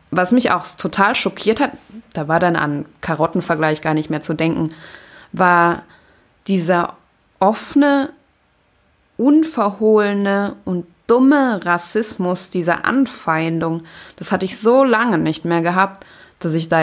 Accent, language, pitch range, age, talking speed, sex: German, German, 165-215 Hz, 20-39, 130 wpm, female